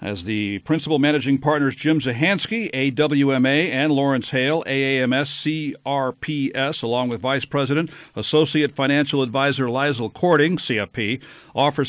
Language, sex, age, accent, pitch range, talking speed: English, male, 50-69, American, 135-165 Hz, 120 wpm